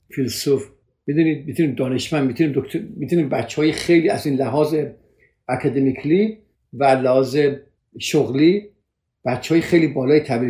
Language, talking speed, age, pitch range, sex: Persian, 105 wpm, 50-69, 120-160 Hz, male